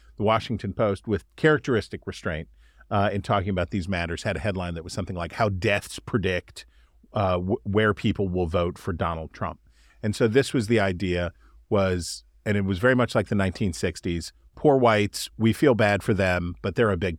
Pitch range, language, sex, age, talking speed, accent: 90-110 Hz, English, male, 40-59, 195 wpm, American